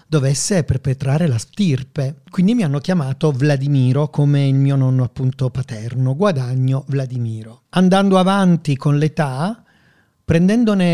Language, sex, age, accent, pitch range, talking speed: Italian, male, 40-59, native, 135-180 Hz, 120 wpm